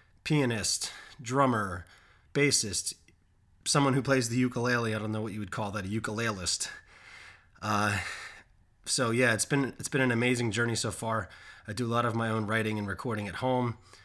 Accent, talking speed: American, 180 wpm